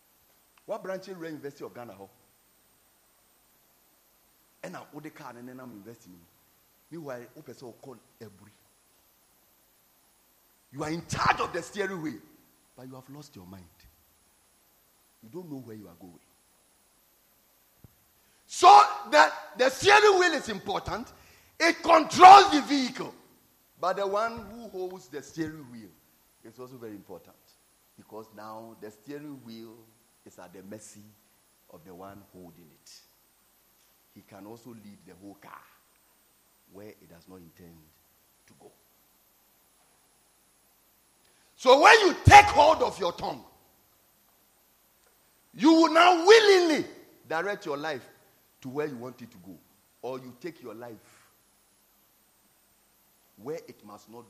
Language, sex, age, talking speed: English, male, 40-59, 130 wpm